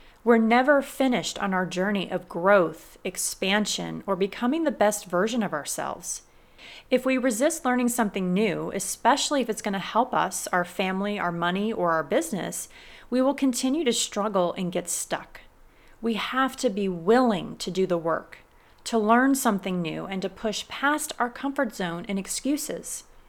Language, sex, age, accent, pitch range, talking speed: English, female, 30-49, American, 185-240 Hz, 170 wpm